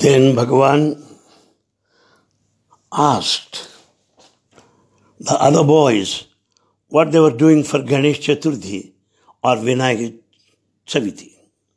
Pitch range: 125-165 Hz